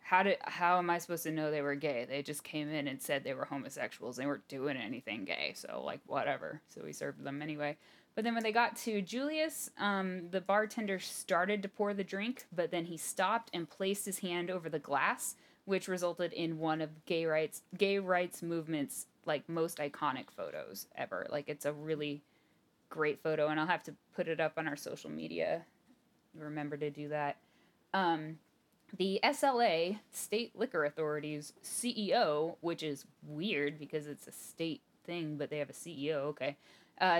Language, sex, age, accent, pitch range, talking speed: English, female, 10-29, American, 150-200 Hz, 190 wpm